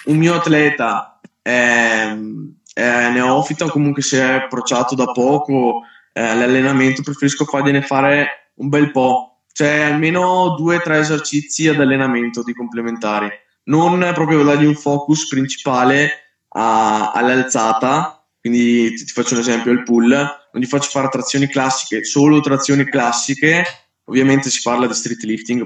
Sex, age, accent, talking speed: male, 20-39, native, 140 wpm